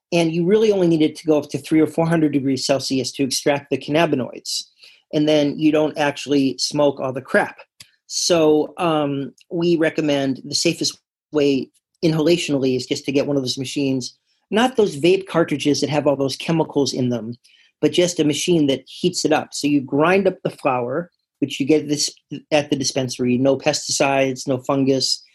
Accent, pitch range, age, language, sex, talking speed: American, 135-160 Hz, 40-59, English, male, 190 wpm